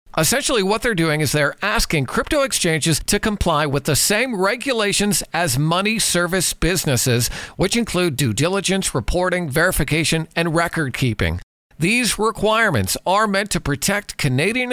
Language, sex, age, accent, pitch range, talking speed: English, male, 50-69, American, 145-205 Hz, 145 wpm